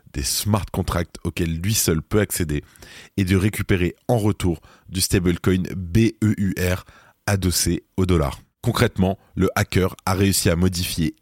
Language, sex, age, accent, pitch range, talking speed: French, male, 20-39, French, 85-100 Hz, 140 wpm